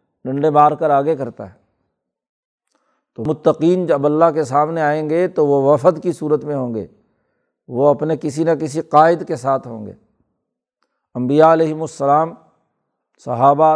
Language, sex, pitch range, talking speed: Urdu, male, 145-165 Hz, 155 wpm